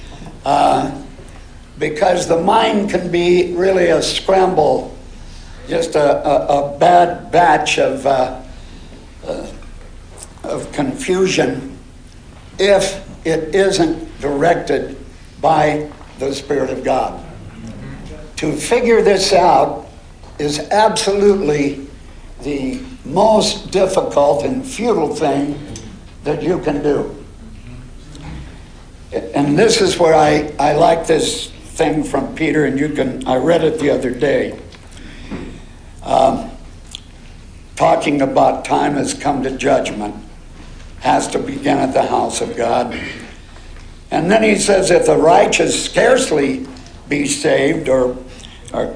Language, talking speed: English, 115 wpm